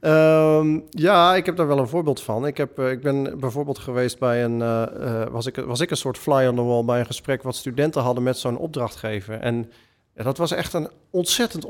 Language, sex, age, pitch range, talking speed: Dutch, male, 40-59, 125-160 Hz, 215 wpm